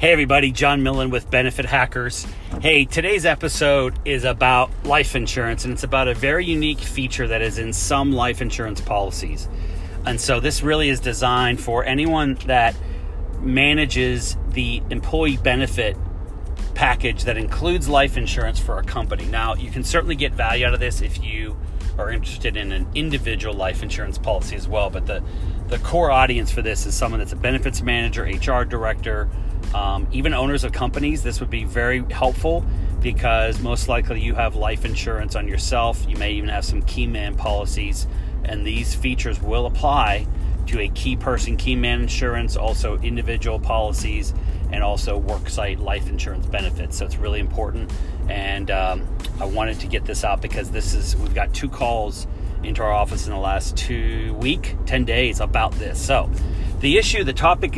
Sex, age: male, 30-49